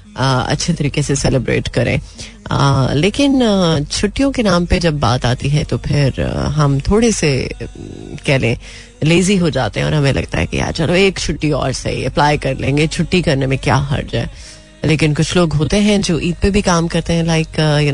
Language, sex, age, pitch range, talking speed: Hindi, female, 30-49, 135-190 Hz, 215 wpm